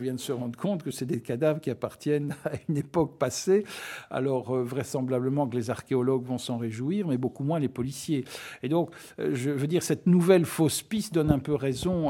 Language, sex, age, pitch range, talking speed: French, male, 60-79, 125-155 Hz, 215 wpm